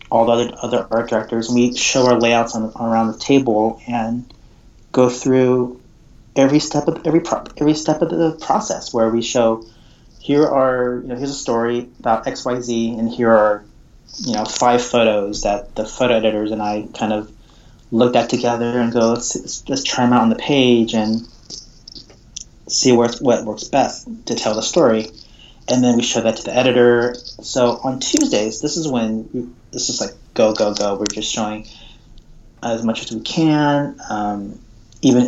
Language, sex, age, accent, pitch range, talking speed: English, male, 30-49, American, 115-135 Hz, 185 wpm